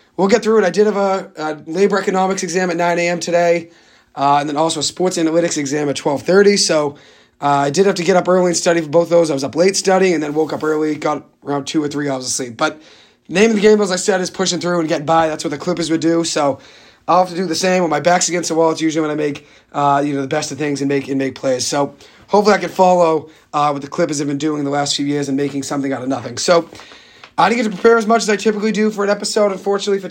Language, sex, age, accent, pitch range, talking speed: English, male, 30-49, American, 145-180 Hz, 295 wpm